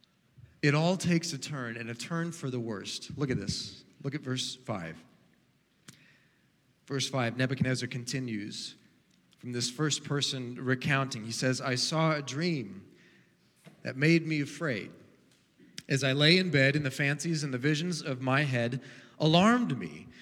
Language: English